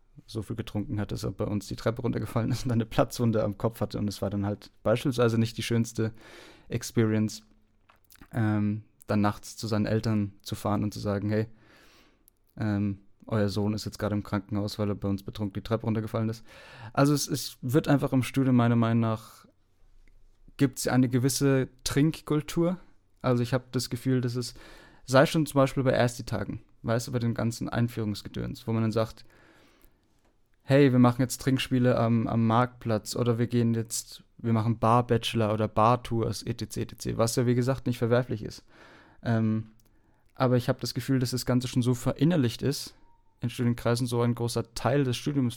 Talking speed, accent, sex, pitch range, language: 185 wpm, German, male, 105-125 Hz, German